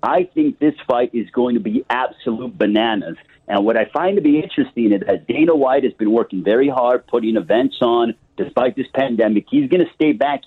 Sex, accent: male, American